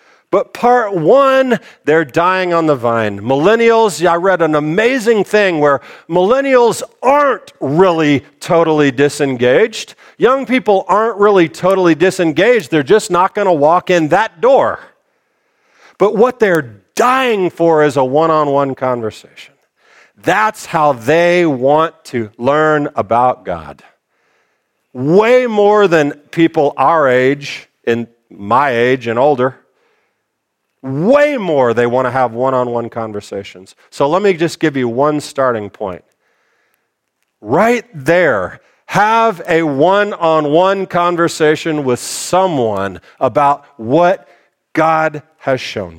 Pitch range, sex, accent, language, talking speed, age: 125-180 Hz, male, American, English, 120 wpm, 50-69